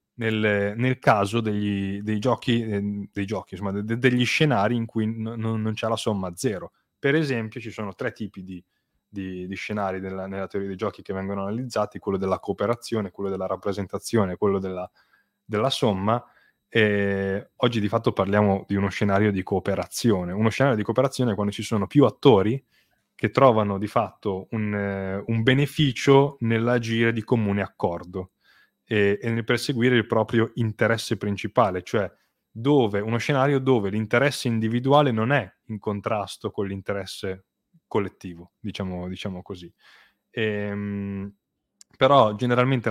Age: 20-39